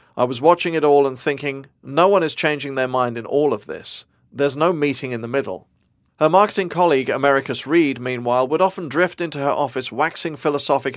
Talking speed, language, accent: 200 wpm, English, British